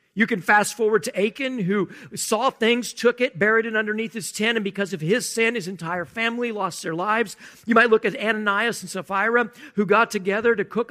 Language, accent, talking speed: English, American, 215 wpm